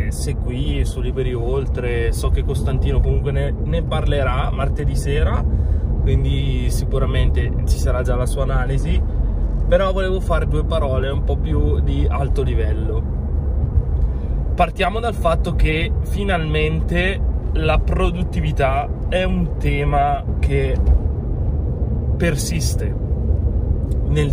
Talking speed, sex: 110 wpm, male